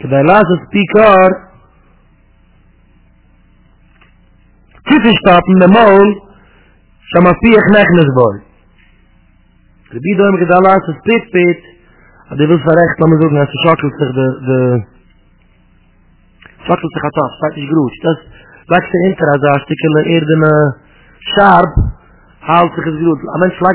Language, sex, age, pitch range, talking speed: English, male, 40-59, 130-175 Hz, 45 wpm